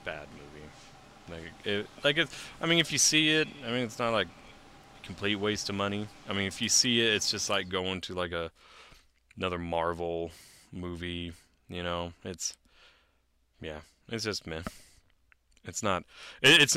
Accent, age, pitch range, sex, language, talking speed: American, 30-49, 80-105 Hz, male, English, 170 wpm